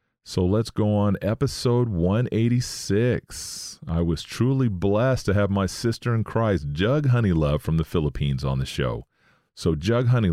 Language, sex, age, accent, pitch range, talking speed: English, male, 40-59, American, 80-100 Hz, 165 wpm